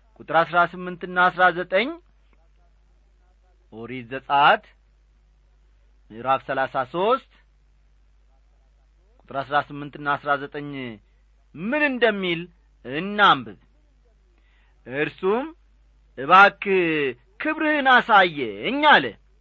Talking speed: 60 wpm